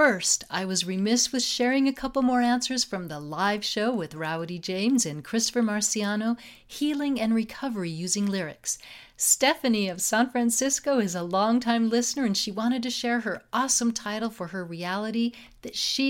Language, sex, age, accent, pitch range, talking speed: English, female, 50-69, American, 185-240 Hz, 170 wpm